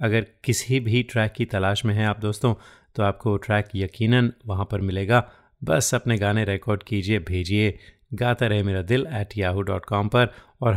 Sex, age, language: male, 30-49, Hindi